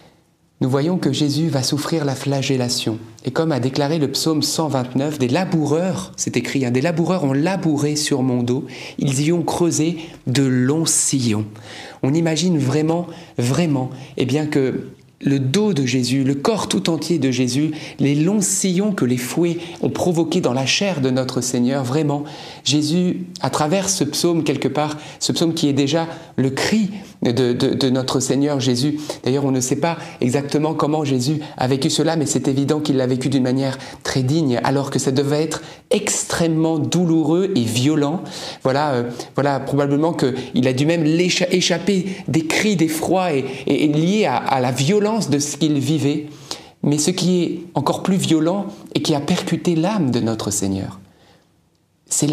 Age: 30-49